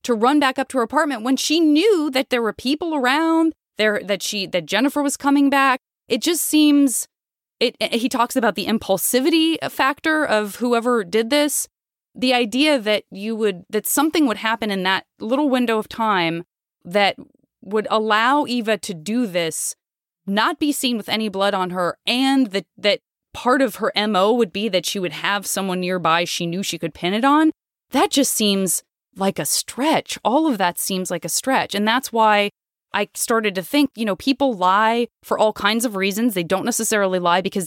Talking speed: 200 wpm